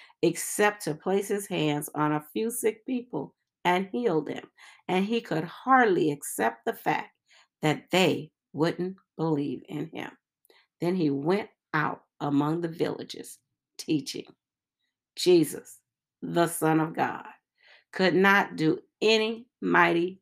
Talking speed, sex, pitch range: 130 wpm, female, 150-205 Hz